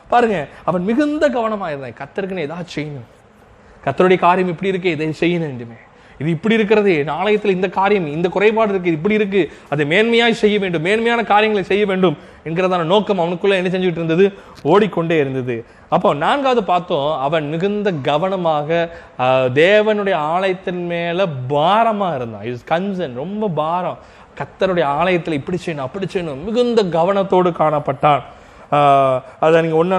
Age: 20-39